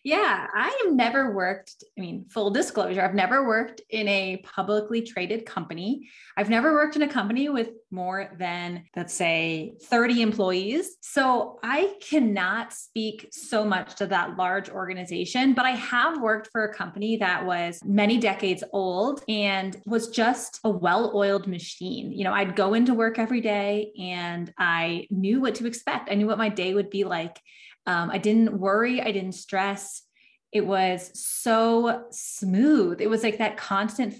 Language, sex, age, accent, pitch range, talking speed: English, female, 20-39, American, 185-235 Hz, 170 wpm